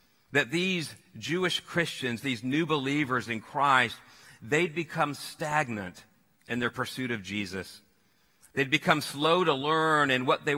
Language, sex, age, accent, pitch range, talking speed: English, male, 50-69, American, 115-140 Hz, 140 wpm